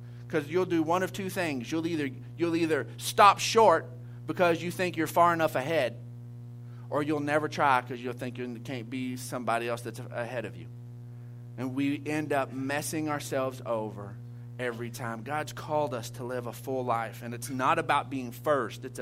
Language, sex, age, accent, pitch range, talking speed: English, male, 40-59, American, 120-190 Hz, 190 wpm